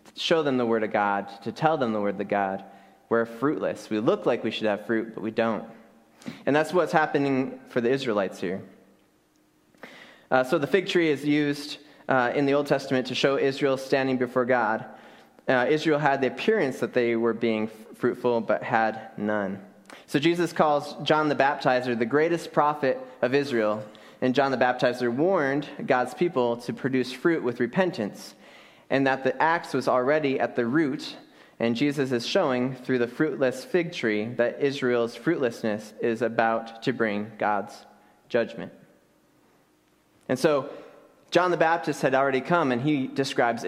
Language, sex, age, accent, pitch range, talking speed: English, male, 20-39, American, 115-140 Hz, 170 wpm